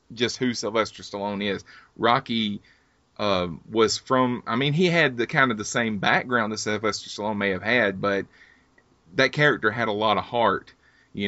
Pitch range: 95-110 Hz